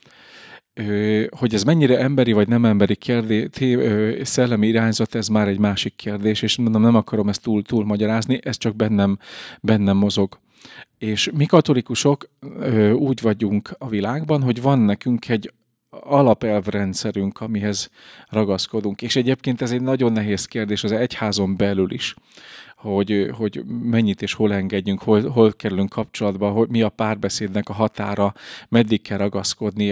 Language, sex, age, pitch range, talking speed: Hungarian, male, 40-59, 100-115 Hz, 145 wpm